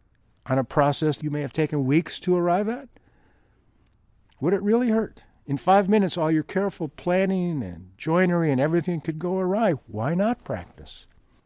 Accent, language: American, English